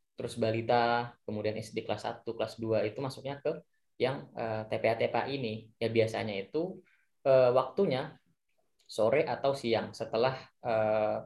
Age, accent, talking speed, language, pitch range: 10-29, native, 135 wpm, Indonesian, 110-135 Hz